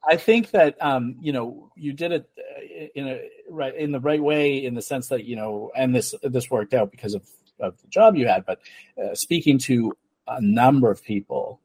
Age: 40-59